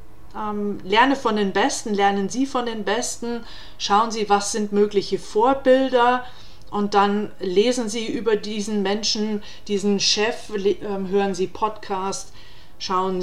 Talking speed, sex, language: 125 wpm, female, German